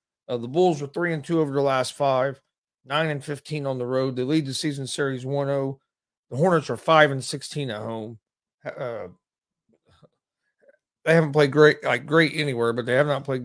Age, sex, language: 40-59, male, English